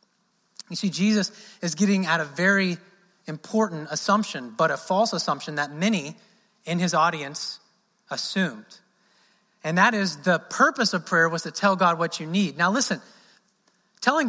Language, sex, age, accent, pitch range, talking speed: English, male, 30-49, American, 175-215 Hz, 155 wpm